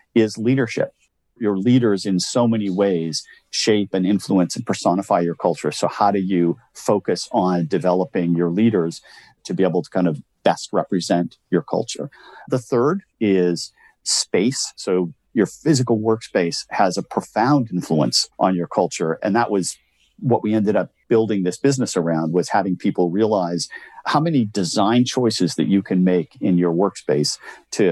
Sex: male